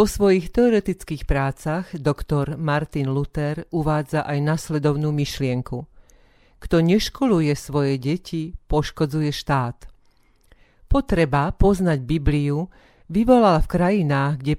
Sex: female